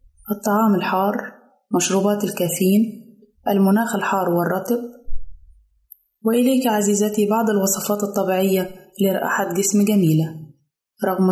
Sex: female